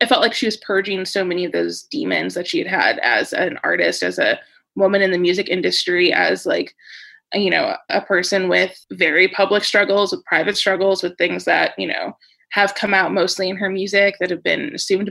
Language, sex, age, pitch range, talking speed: English, female, 20-39, 185-205 Hz, 215 wpm